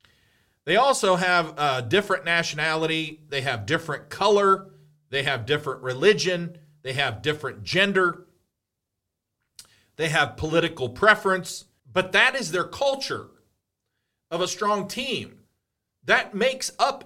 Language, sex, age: English, male, 40-59